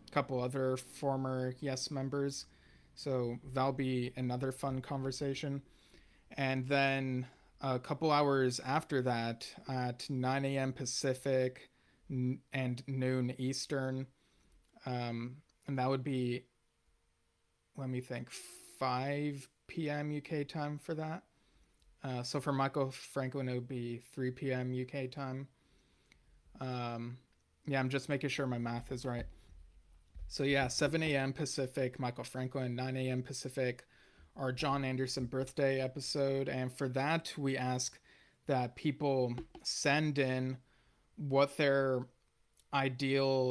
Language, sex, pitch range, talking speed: English, male, 125-140 Hz, 115 wpm